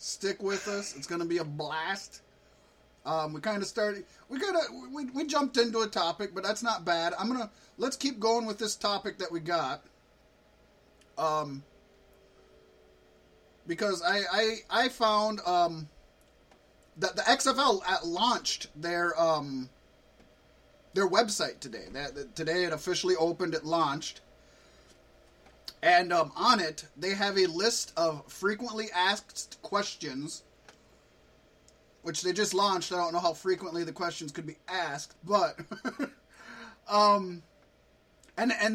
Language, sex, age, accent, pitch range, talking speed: English, male, 30-49, American, 165-215 Hz, 140 wpm